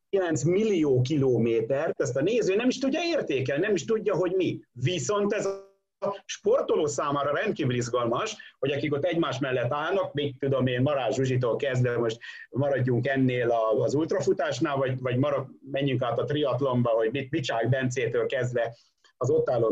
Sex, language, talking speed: male, Hungarian, 165 wpm